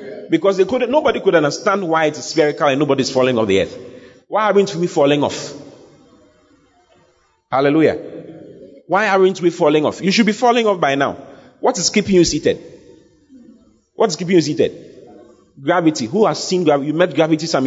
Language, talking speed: English, 170 wpm